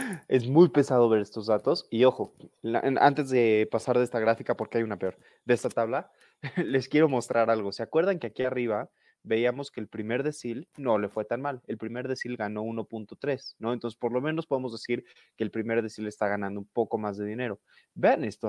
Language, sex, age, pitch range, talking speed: Spanish, male, 20-39, 110-145 Hz, 210 wpm